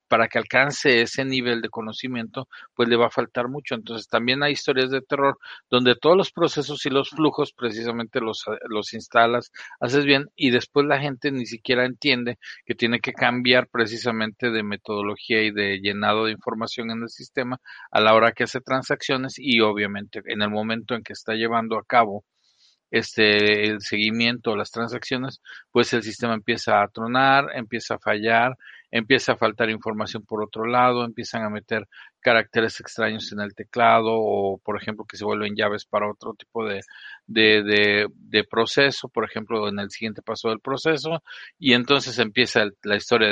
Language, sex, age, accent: Spanish, male, 40-59, Mexican